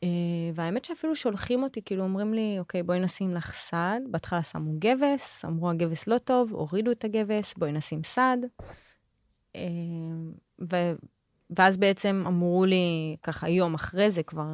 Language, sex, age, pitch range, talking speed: Hebrew, female, 20-39, 165-215 Hz, 155 wpm